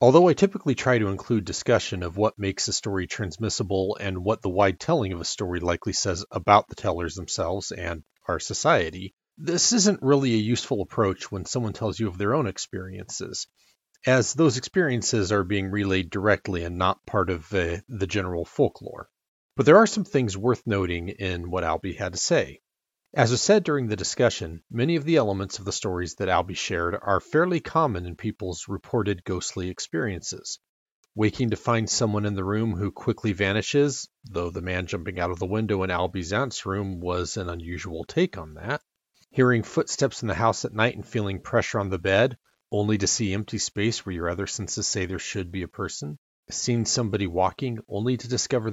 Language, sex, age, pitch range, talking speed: English, male, 40-59, 95-120 Hz, 195 wpm